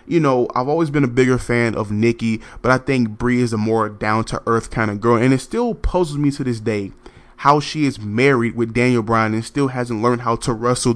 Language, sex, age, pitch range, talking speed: English, male, 20-39, 110-125 Hz, 235 wpm